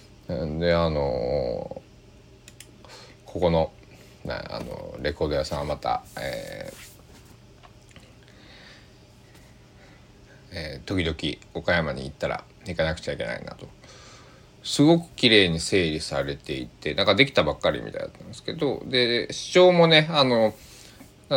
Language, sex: Japanese, male